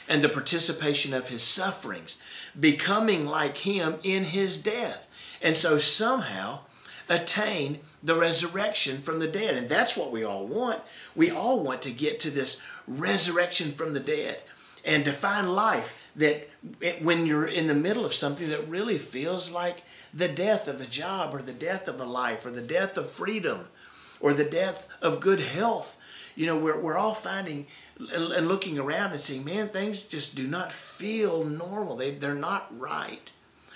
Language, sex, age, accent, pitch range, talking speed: English, male, 50-69, American, 140-195 Hz, 175 wpm